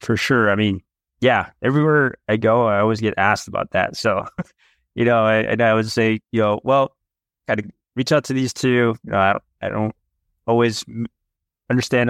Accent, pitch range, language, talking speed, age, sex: American, 95-110 Hz, English, 200 wpm, 20-39, male